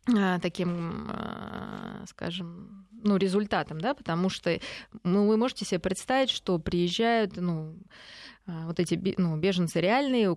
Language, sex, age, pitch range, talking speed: Russian, female, 20-39, 170-205 Hz, 120 wpm